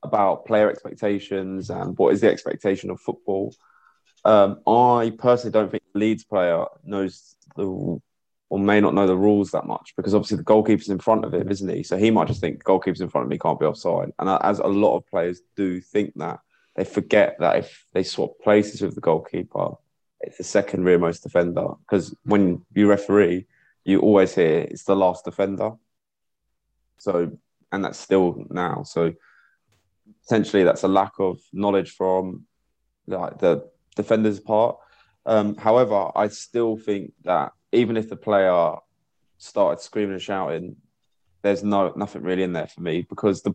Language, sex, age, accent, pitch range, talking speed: English, male, 20-39, British, 95-110 Hz, 175 wpm